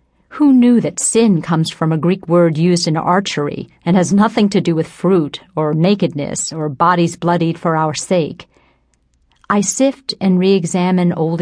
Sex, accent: female, American